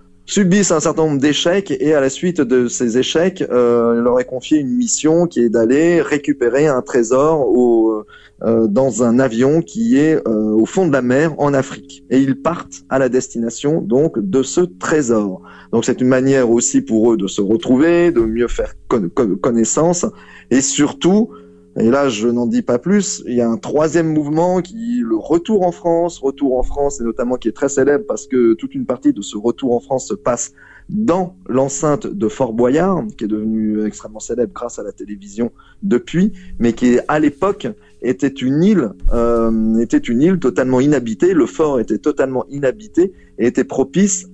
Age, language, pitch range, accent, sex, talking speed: 20-39, French, 115-170 Hz, French, male, 195 wpm